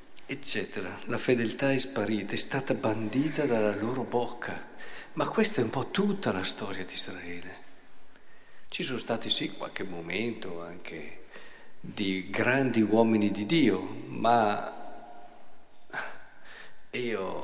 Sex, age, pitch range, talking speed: male, 50-69, 105-135 Hz, 120 wpm